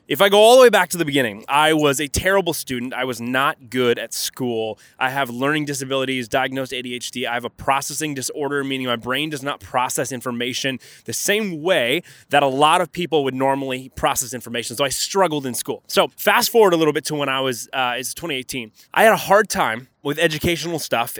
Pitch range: 125-150 Hz